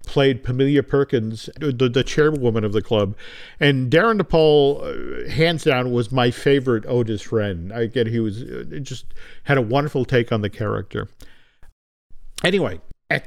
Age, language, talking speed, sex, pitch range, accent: 50-69, English, 150 wpm, male, 115-155 Hz, American